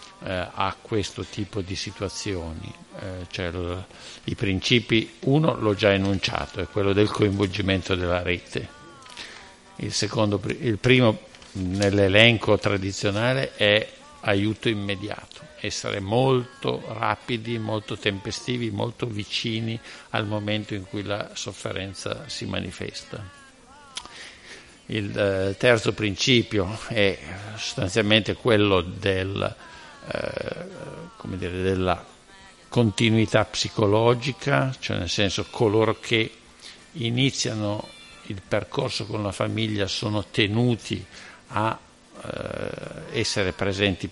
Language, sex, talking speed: Italian, male, 100 wpm